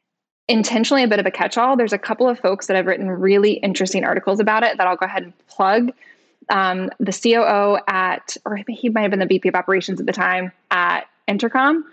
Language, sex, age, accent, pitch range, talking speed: English, female, 10-29, American, 185-215 Hz, 215 wpm